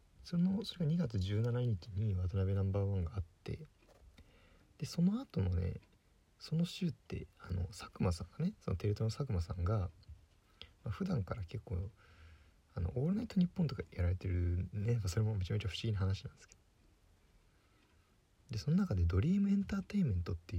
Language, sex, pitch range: Japanese, male, 85-115 Hz